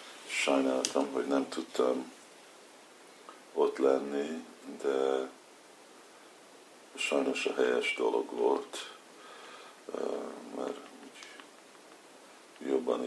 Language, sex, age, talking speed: Hungarian, male, 50-69, 65 wpm